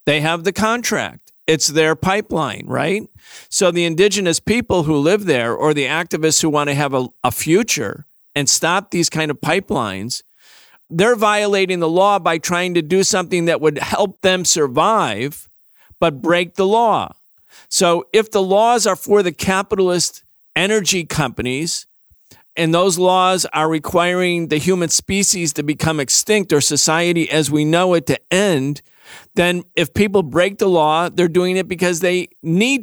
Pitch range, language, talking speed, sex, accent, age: 155-190 Hz, English, 165 wpm, male, American, 50-69